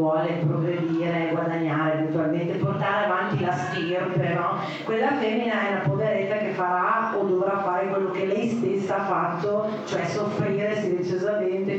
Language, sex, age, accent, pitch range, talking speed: Italian, female, 40-59, native, 180-230 Hz, 145 wpm